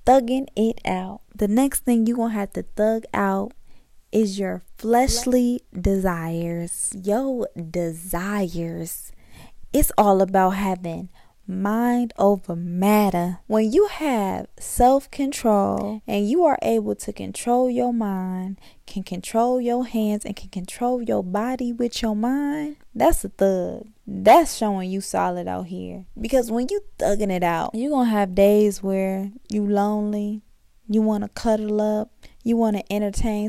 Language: English